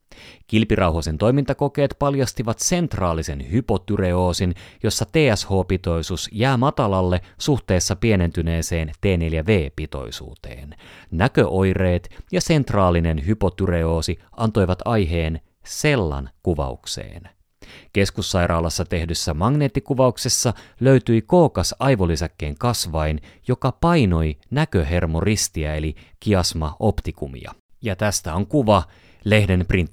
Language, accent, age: Finnish, native, 30-49